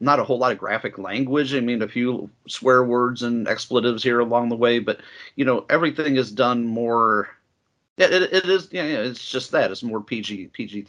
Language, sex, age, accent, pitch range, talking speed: English, male, 40-59, American, 115-140 Hz, 215 wpm